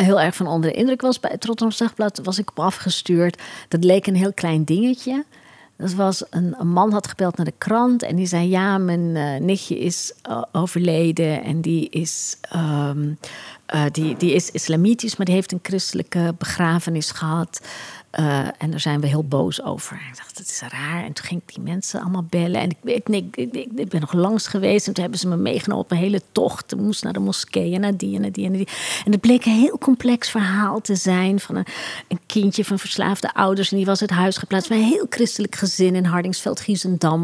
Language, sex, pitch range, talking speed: Dutch, female, 170-215 Hz, 225 wpm